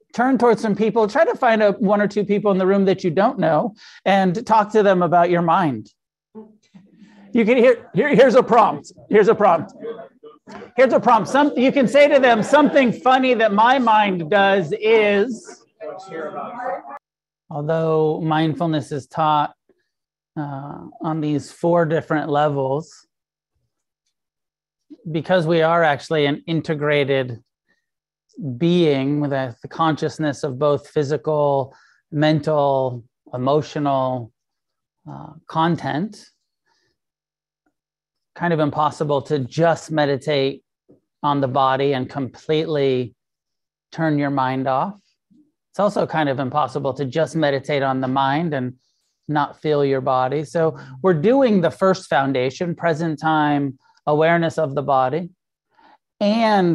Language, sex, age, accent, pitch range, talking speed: English, male, 40-59, American, 145-205 Hz, 125 wpm